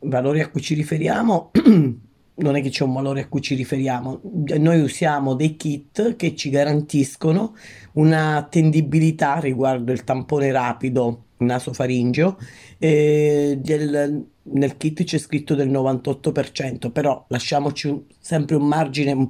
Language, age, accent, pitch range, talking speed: Italian, 30-49, native, 130-155 Hz, 135 wpm